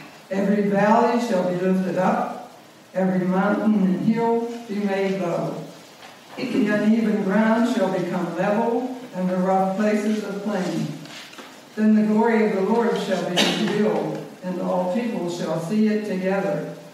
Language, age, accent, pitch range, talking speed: English, 60-79, American, 185-220 Hz, 150 wpm